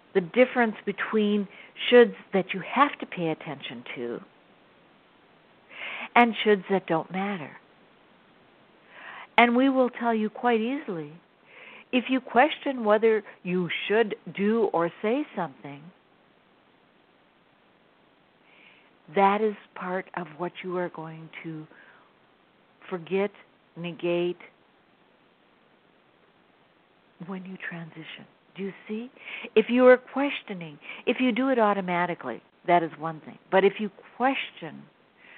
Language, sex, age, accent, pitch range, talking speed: English, female, 60-79, American, 175-230 Hz, 115 wpm